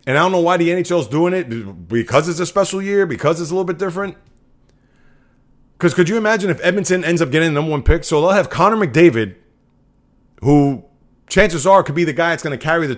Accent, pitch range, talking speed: American, 130-175 Hz, 235 wpm